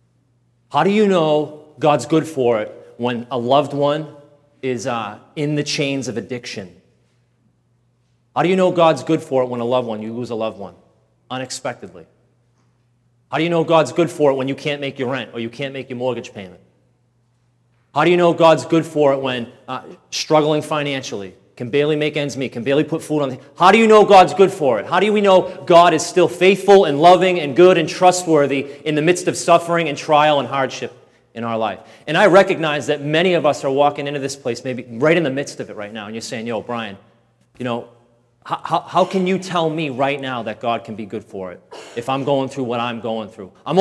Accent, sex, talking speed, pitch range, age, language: American, male, 230 wpm, 120-155 Hz, 30-49, English